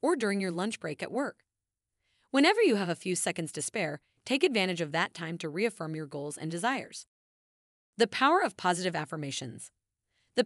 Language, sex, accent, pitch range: English, female, American, 155-215 Hz